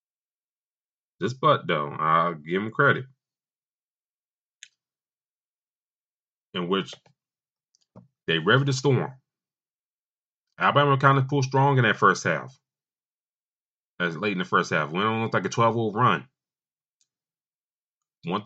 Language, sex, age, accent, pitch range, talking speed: English, male, 30-49, American, 105-140 Hz, 120 wpm